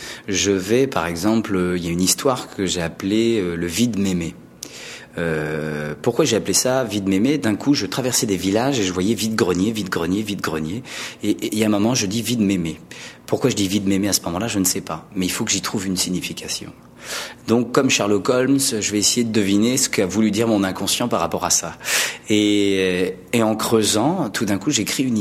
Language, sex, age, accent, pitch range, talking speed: French, male, 30-49, French, 95-120 Hz, 260 wpm